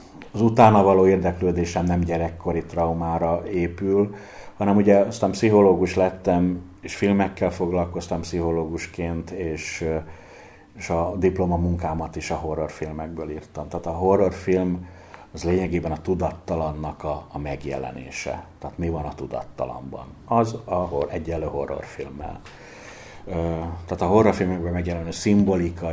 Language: Hungarian